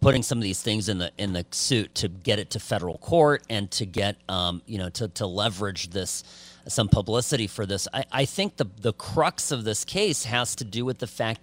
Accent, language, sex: American, English, male